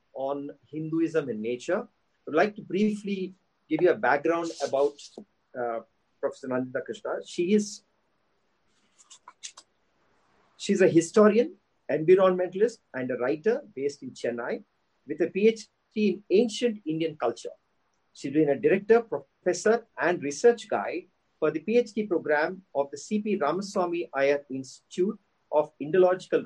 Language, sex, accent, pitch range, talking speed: English, male, Indian, 145-210 Hz, 125 wpm